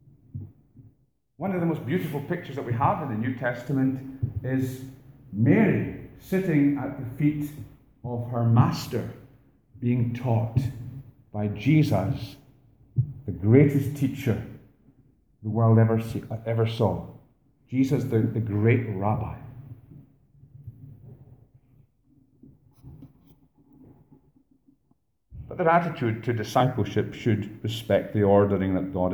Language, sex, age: English, male, 50-69